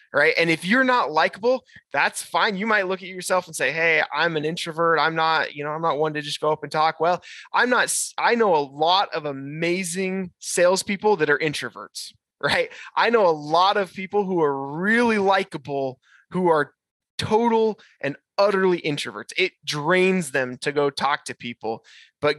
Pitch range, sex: 150-200 Hz, male